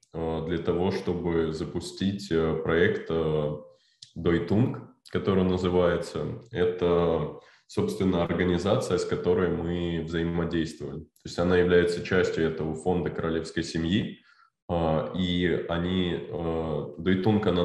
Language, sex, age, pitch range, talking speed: Russian, male, 20-39, 80-95 Hz, 100 wpm